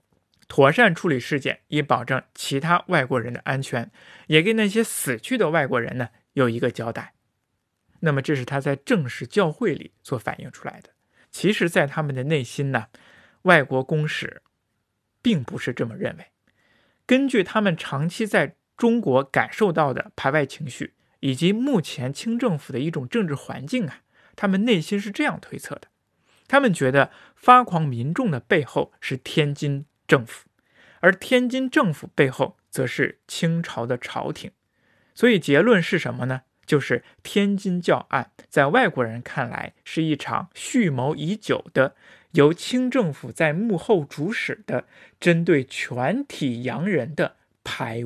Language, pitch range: Chinese, 135-190 Hz